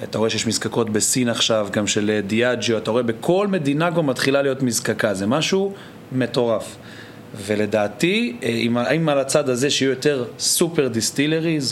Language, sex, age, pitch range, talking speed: Hebrew, male, 30-49, 115-145 Hz, 150 wpm